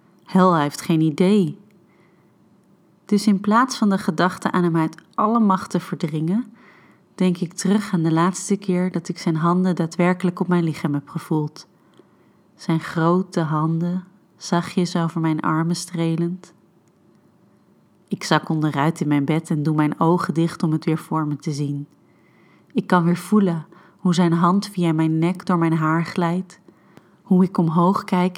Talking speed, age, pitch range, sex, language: 165 wpm, 30-49, 165-185 Hz, female, Dutch